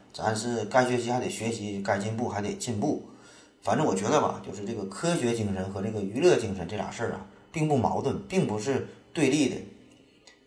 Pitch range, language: 95-115 Hz, Chinese